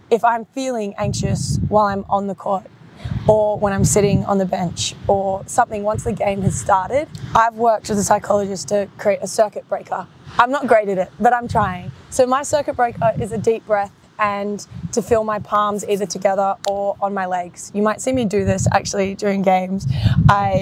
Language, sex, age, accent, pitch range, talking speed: English, female, 20-39, Australian, 195-230 Hz, 205 wpm